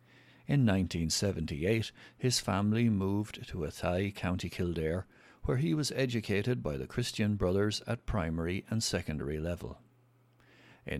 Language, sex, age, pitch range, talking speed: English, male, 60-79, 85-120 Hz, 125 wpm